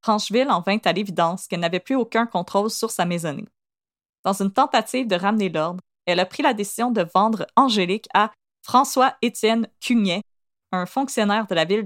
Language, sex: French, female